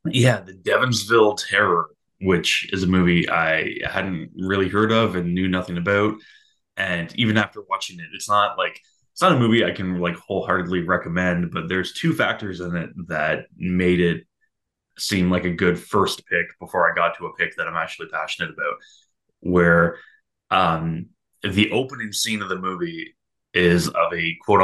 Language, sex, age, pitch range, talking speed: English, male, 20-39, 85-100 Hz, 175 wpm